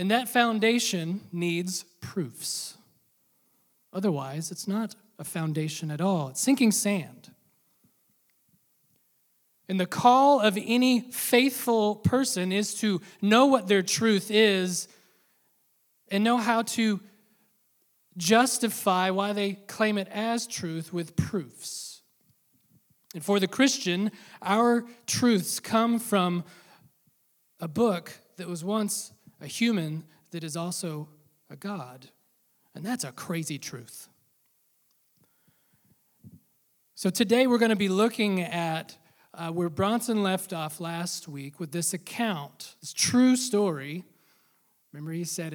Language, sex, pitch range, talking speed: English, male, 165-220 Hz, 120 wpm